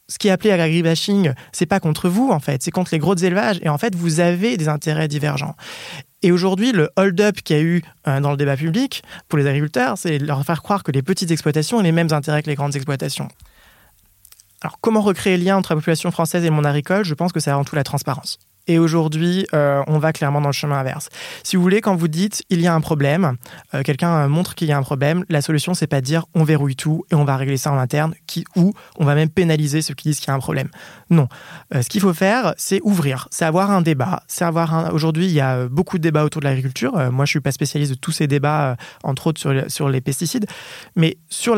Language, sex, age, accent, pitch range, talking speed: French, male, 20-39, French, 145-180 Hz, 270 wpm